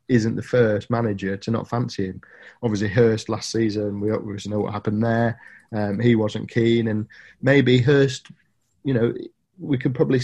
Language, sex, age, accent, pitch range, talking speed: English, male, 30-49, British, 105-120 Hz, 175 wpm